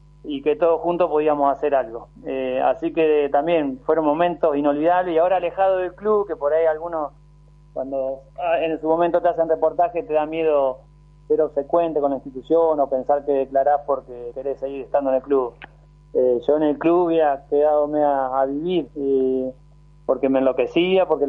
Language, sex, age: Spanish, male, 30-49